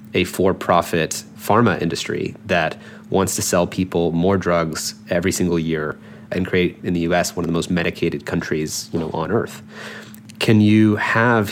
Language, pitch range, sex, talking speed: English, 85-110 Hz, male, 165 wpm